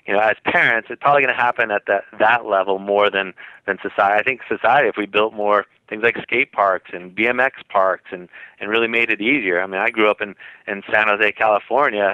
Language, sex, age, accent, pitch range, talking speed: English, male, 30-49, American, 95-110 Hz, 230 wpm